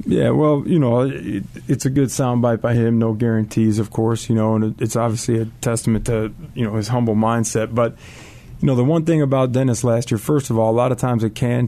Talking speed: 235 wpm